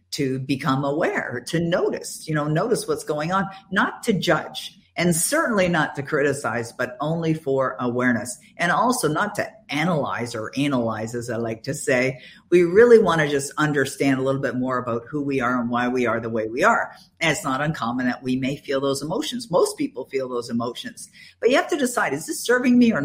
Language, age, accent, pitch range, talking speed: English, 50-69, American, 135-175 Hz, 215 wpm